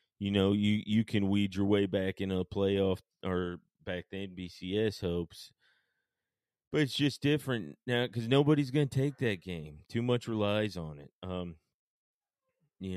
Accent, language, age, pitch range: American, English, 30-49, 90-110 Hz